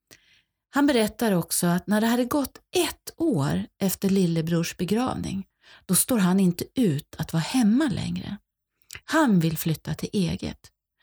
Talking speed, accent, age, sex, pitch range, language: 145 wpm, native, 40-59, female, 170-230 Hz, Swedish